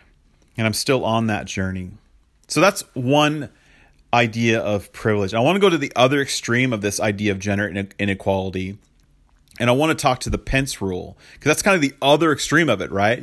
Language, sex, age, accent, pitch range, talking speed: English, male, 40-59, American, 100-125 Hz, 205 wpm